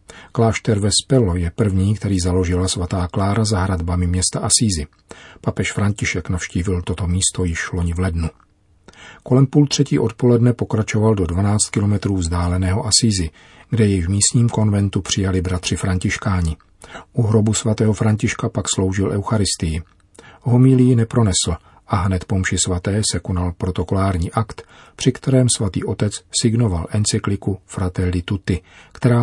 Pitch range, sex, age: 90-115 Hz, male, 40-59